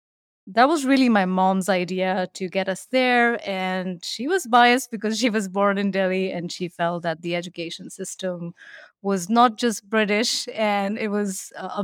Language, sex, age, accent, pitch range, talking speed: English, female, 30-49, Indian, 185-230 Hz, 175 wpm